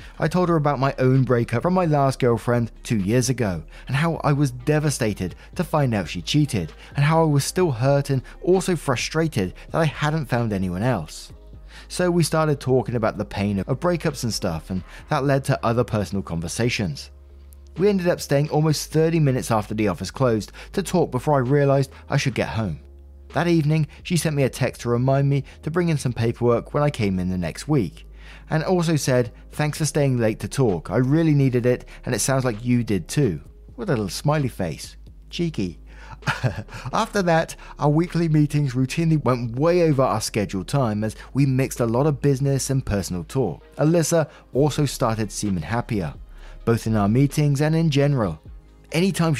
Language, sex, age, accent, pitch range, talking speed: English, male, 20-39, British, 105-150 Hz, 195 wpm